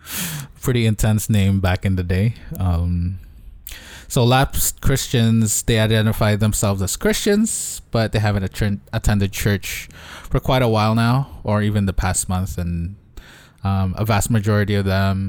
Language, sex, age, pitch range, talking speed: English, male, 20-39, 95-115 Hz, 150 wpm